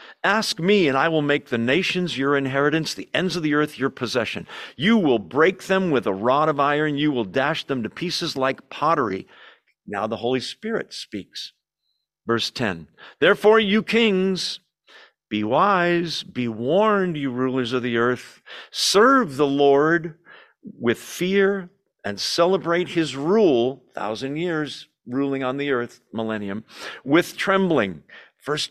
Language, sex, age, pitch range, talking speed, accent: English, male, 50-69, 125-175 Hz, 150 wpm, American